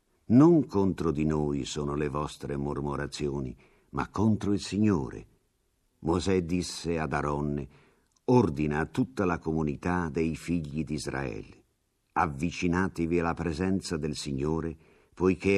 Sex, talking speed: male, 115 wpm